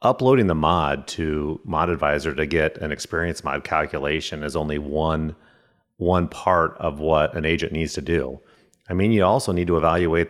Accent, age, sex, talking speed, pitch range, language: American, 30-49, male, 180 wpm, 80-100 Hz, English